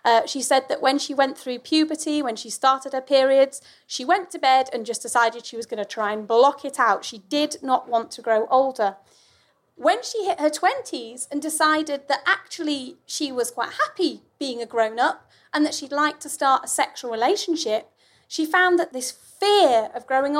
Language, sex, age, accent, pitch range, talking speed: English, female, 30-49, British, 240-295 Hz, 205 wpm